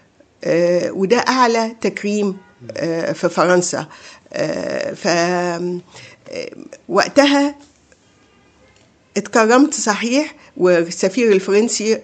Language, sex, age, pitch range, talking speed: Arabic, female, 50-69, 180-230 Hz, 55 wpm